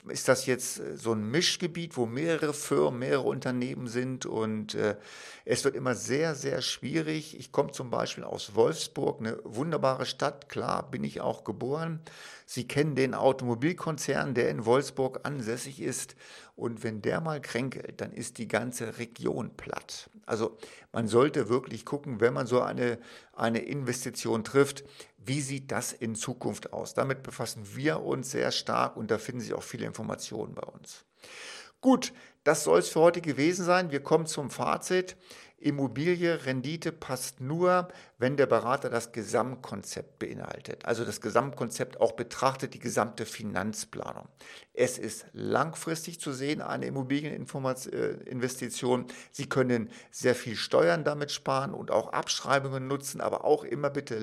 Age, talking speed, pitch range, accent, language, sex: 50-69, 155 wpm, 120-150 Hz, German, German, male